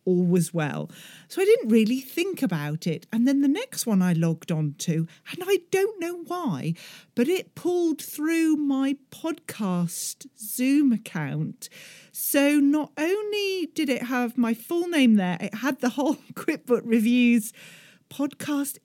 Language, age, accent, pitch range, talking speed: English, 40-59, British, 200-290 Hz, 155 wpm